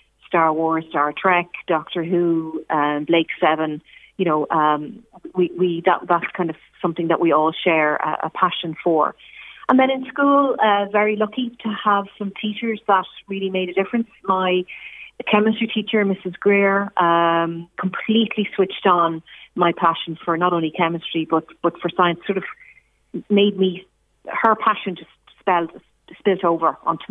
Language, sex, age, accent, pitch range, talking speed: English, female, 30-49, Irish, 170-200 Hz, 160 wpm